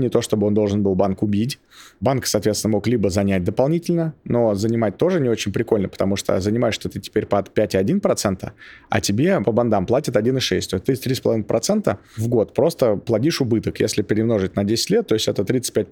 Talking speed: 190 wpm